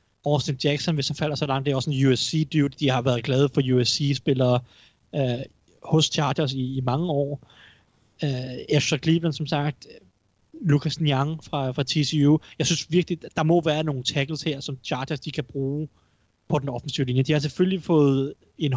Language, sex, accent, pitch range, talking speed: Danish, male, native, 130-155 Hz, 180 wpm